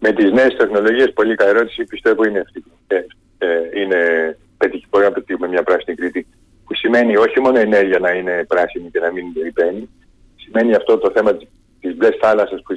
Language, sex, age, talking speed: Greek, male, 40-59, 195 wpm